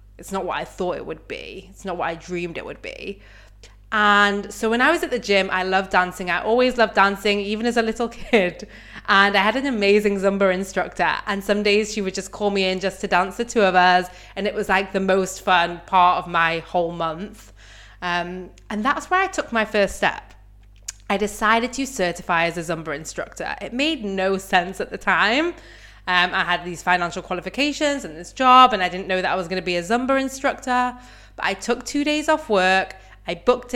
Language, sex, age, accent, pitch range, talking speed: English, female, 20-39, British, 180-225 Hz, 225 wpm